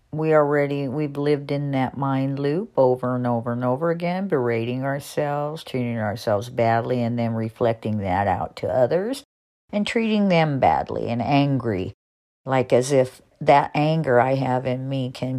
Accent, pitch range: American, 110-145 Hz